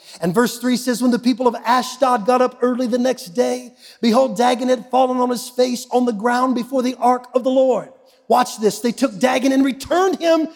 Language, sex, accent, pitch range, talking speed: English, male, American, 195-255 Hz, 220 wpm